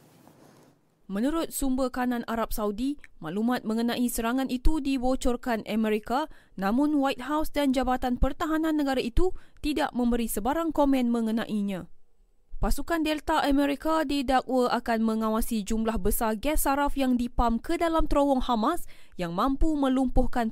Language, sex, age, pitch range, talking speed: Malay, female, 20-39, 220-280 Hz, 125 wpm